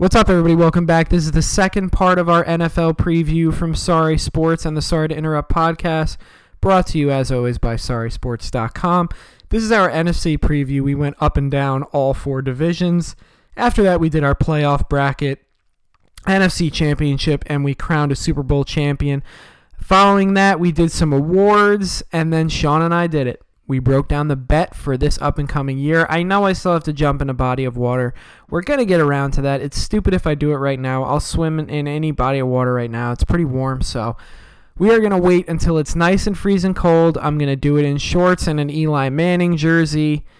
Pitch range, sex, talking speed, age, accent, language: 140-170 Hz, male, 215 wpm, 20-39, American, English